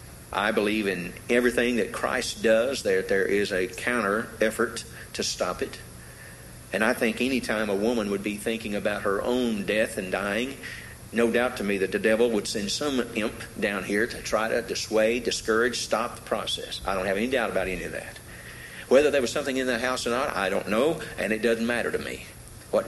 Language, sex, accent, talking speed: English, male, American, 210 wpm